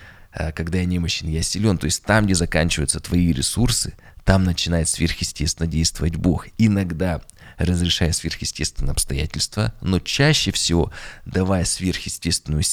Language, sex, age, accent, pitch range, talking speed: Russian, male, 20-39, native, 80-95 Hz, 125 wpm